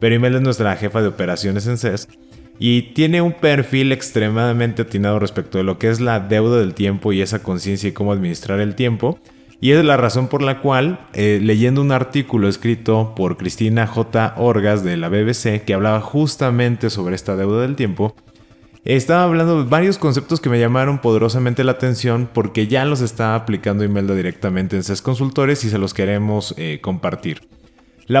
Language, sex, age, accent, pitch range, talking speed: Spanish, male, 20-39, Mexican, 100-130 Hz, 185 wpm